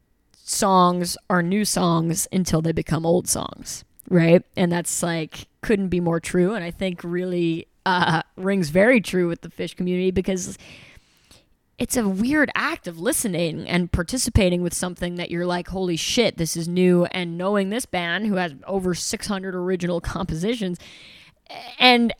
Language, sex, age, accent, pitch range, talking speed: English, female, 20-39, American, 175-225 Hz, 160 wpm